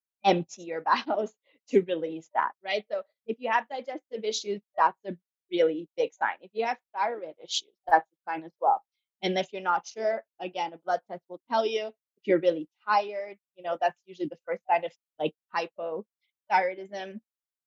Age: 20-39